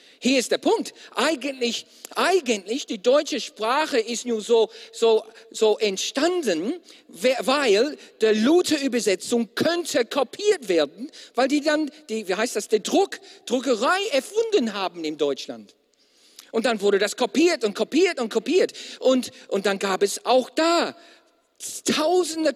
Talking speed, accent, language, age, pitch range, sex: 140 wpm, German, German, 50-69, 235-305 Hz, male